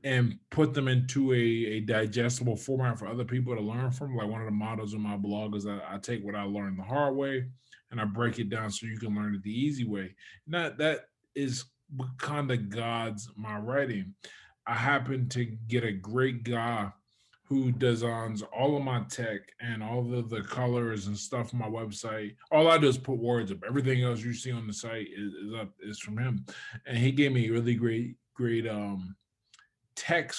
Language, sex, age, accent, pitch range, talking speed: English, male, 20-39, American, 105-125 Hz, 210 wpm